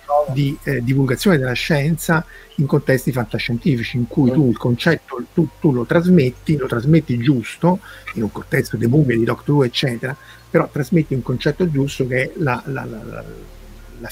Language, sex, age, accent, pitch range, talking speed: Italian, male, 50-69, native, 115-150 Hz, 170 wpm